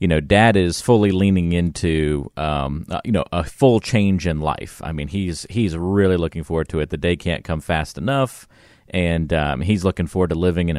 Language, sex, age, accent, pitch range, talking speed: English, male, 40-59, American, 80-100 Hz, 210 wpm